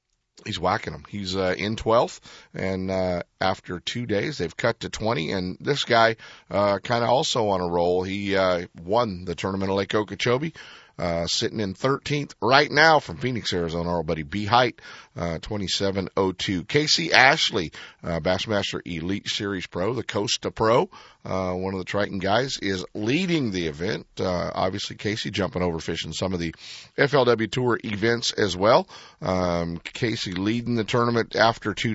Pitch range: 95-120 Hz